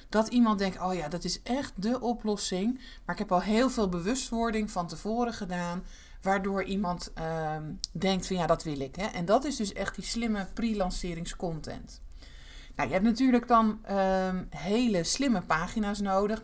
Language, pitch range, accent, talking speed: Dutch, 180-230 Hz, Dutch, 175 wpm